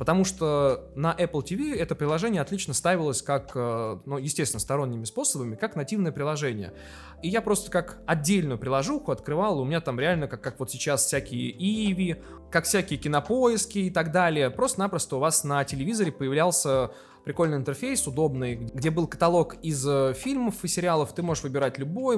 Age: 20-39